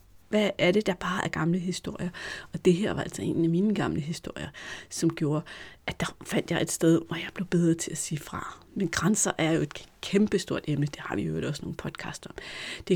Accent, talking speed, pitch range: native, 230 wpm, 165-205 Hz